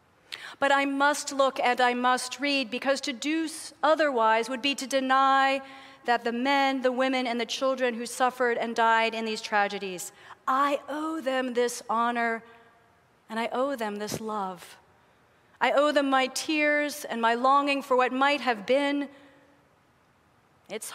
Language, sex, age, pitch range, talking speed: English, female, 40-59, 230-275 Hz, 160 wpm